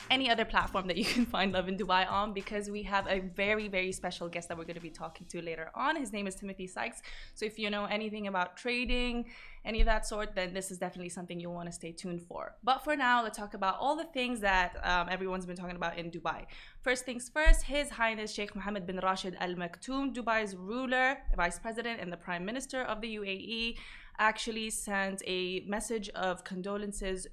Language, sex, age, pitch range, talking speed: Arabic, female, 20-39, 180-215 Hz, 220 wpm